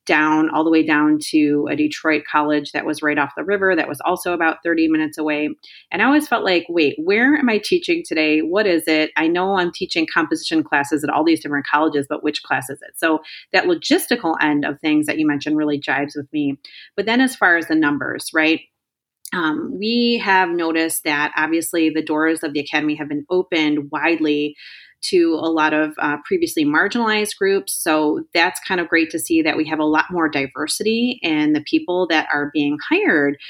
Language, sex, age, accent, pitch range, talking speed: English, female, 30-49, American, 150-190 Hz, 210 wpm